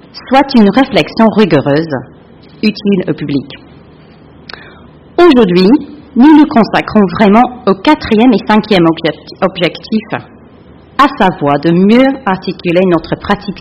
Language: French